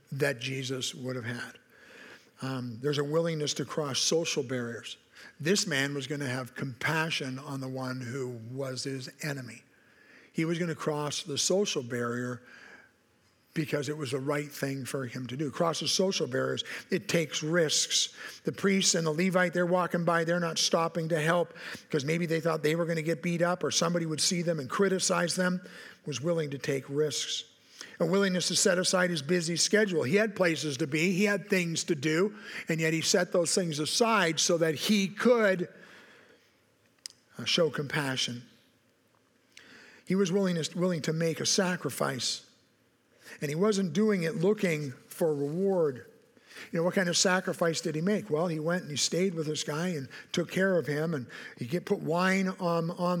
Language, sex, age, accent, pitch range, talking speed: English, male, 50-69, American, 150-180 Hz, 185 wpm